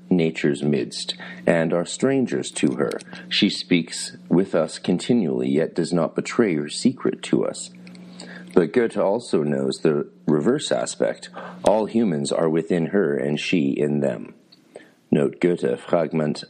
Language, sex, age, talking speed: English, male, 40-59, 140 wpm